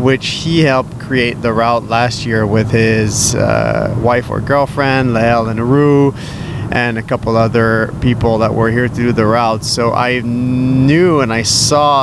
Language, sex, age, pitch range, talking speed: French, male, 30-49, 115-140 Hz, 175 wpm